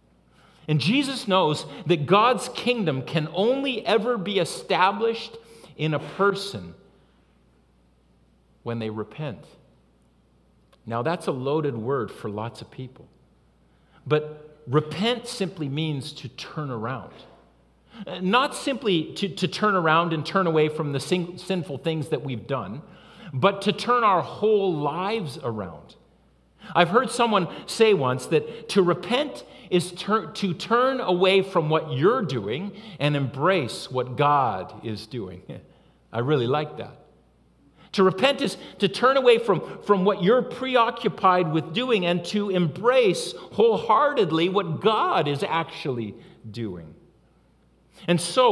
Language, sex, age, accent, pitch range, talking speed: English, male, 50-69, American, 130-205 Hz, 130 wpm